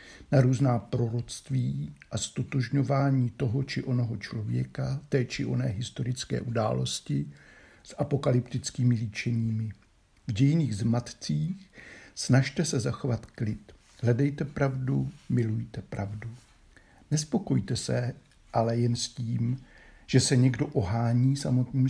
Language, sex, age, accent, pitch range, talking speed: Czech, male, 60-79, native, 110-140 Hz, 105 wpm